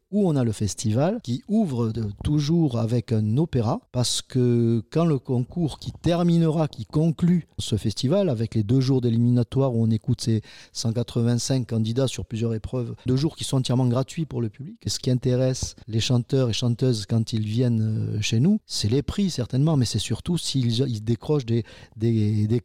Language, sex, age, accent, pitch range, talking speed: French, male, 40-59, French, 115-140 Hz, 190 wpm